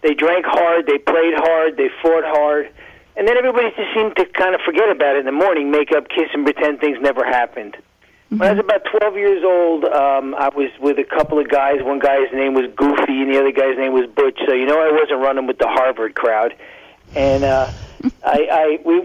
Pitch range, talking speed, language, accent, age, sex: 135-195 Hz, 230 wpm, English, American, 50-69, male